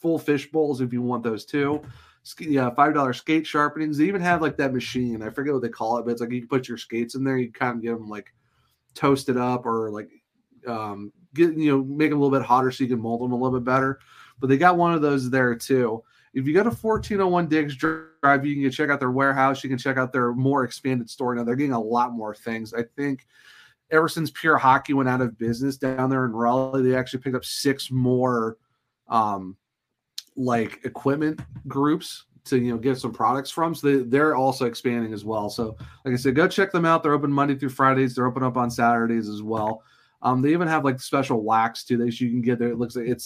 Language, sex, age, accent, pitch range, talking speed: English, male, 30-49, American, 120-140 Hz, 245 wpm